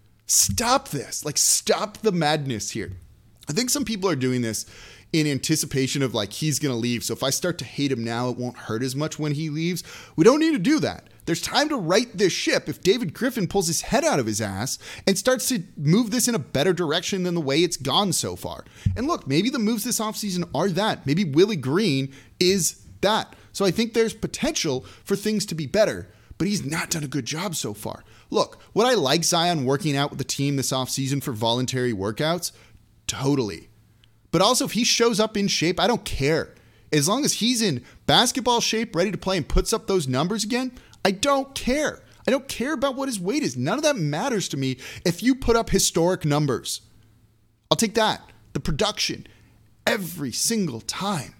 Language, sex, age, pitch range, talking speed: English, male, 30-49, 125-210 Hz, 210 wpm